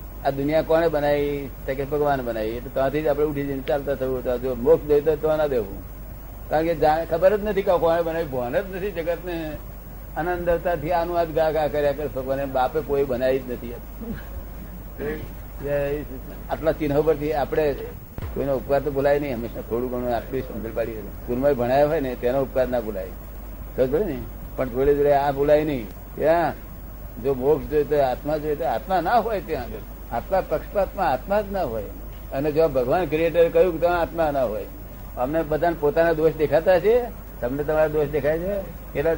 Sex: male